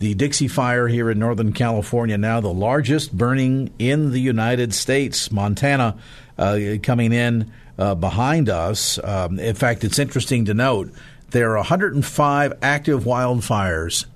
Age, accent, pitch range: 50-69, American, 110-135 Hz